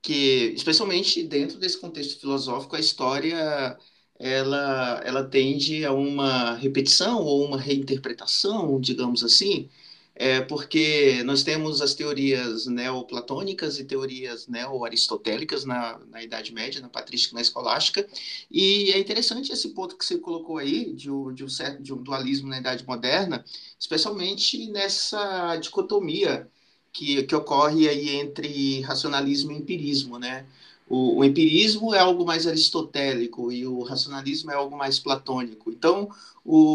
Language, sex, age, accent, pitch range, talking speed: Portuguese, male, 30-49, Brazilian, 130-160 Hz, 130 wpm